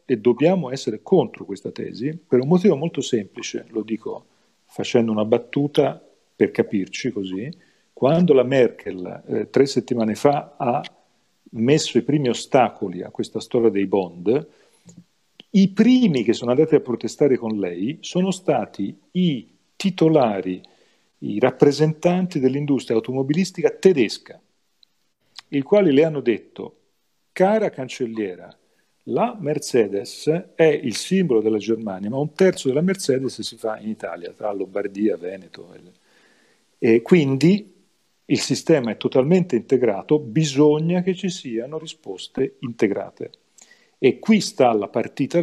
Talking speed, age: 130 wpm, 40-59